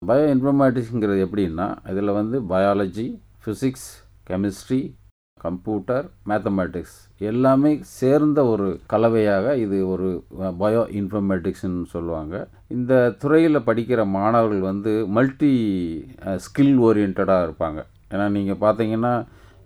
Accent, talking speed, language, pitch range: Indian, 90 wpm, English, 95-120 Hz